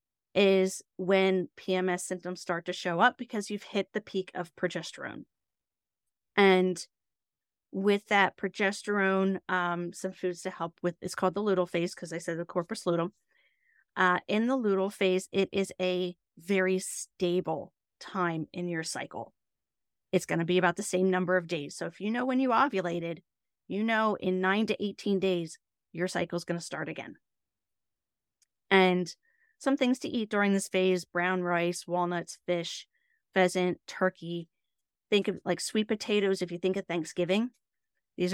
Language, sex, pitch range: English, female, 175-200 Hz